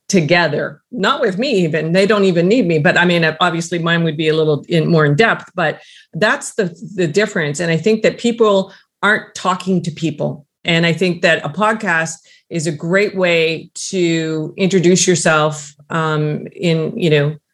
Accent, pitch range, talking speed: American, 160-185 Hz, 180 wpm